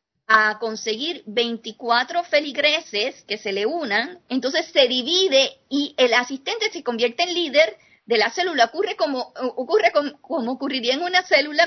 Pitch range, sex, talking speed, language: 230-290 Hz, female, 150 wpm, Spanish